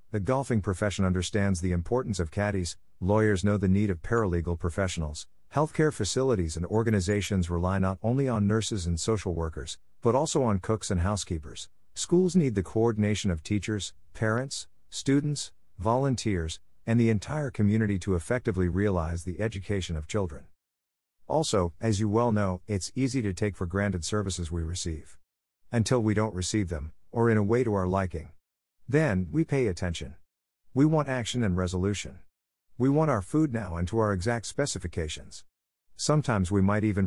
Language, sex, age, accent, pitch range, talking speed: English, male, 50-69, American, 90-115 Hz, 165 wpm